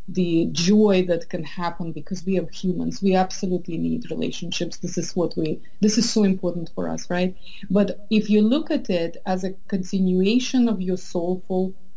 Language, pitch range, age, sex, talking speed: English, 175-200 Hz, 30-49, female, 180 wpm